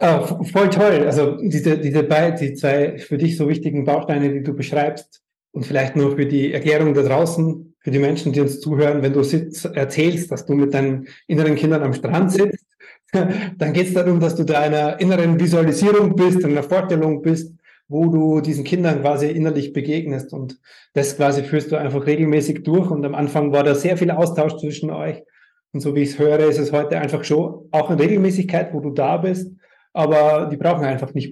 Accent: German